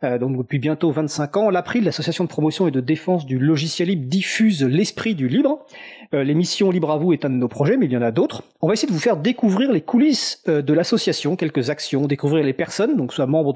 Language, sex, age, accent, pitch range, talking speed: French, male, 40-59, French, 145-195 Hz, 250 wpm